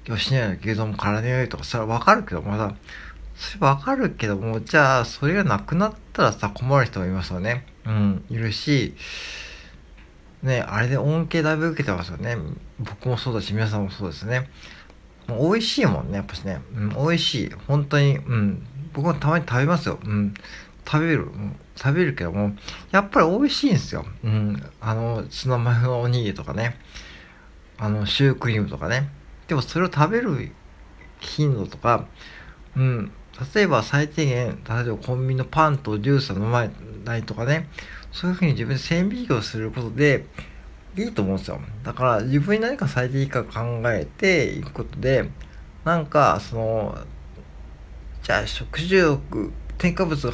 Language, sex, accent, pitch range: Japanese, male, native, 105-150 Hz